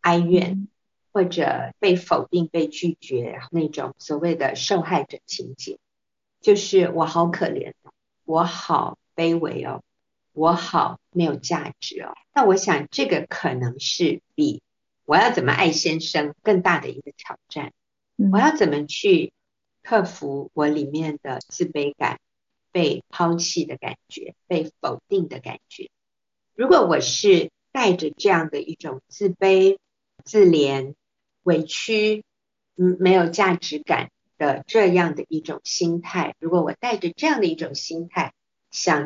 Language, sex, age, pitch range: Chinese, female, 50-69, 160-210 Hz